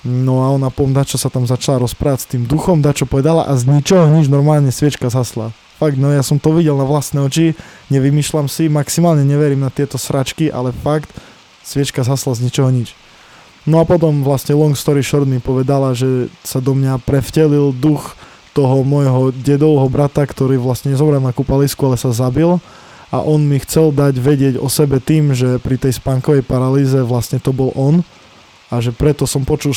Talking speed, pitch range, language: 185 wpm, 130-150 Hz, Slovak